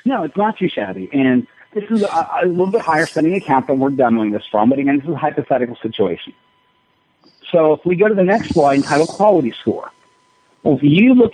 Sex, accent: male, American